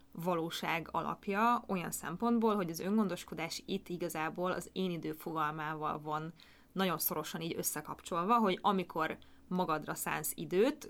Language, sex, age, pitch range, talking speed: Hungarian, female, 20-39, 165-210 Hz, 125 wpm